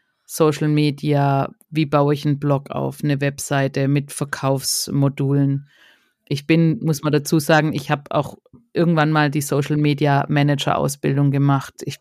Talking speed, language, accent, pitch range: 150 wpm, German, German, 140-160 Hz